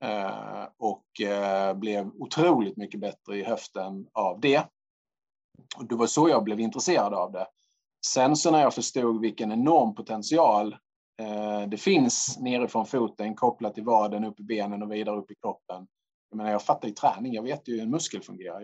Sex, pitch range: male, 110-155 Hz